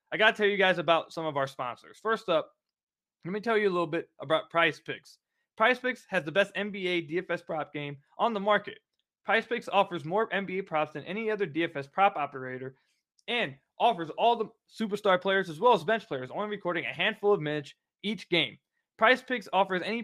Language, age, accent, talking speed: English, 20-39, American, 205 wpm